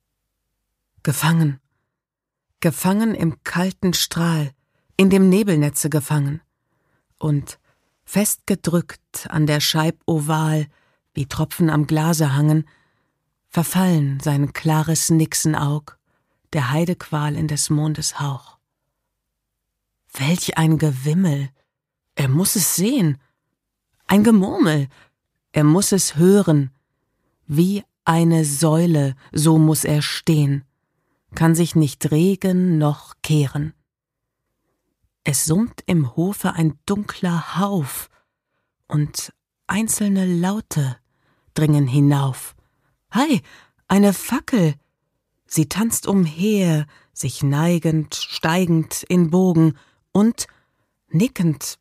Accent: German